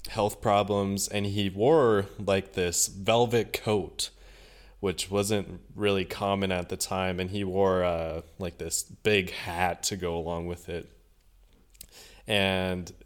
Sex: male